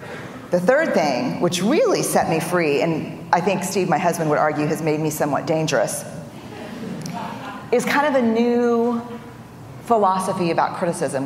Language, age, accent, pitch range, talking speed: English, 40-59, American, 155-225 Hz, 155 wpm